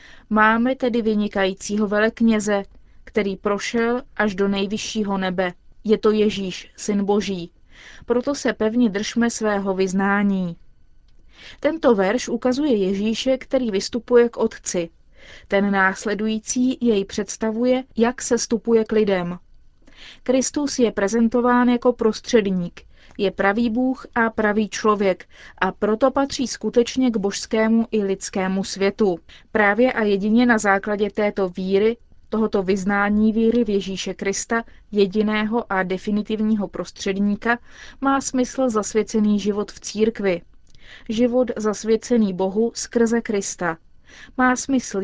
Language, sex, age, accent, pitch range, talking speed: Czech, female, 30-49, native, 200-235 Hz, 115 wpm